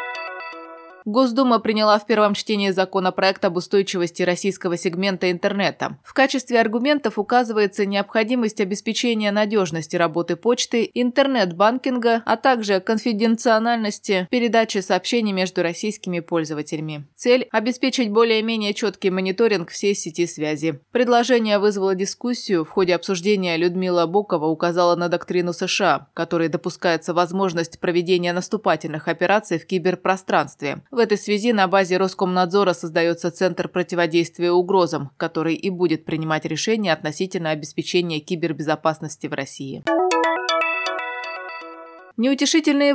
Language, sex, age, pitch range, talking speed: Russian, female, 20-39, 175-225 Hz, 110 wpm